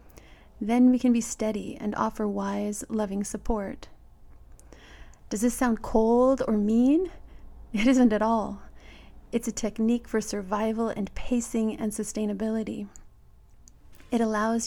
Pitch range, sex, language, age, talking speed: 210-240 Hz, female, English, 30-49, 125 wpm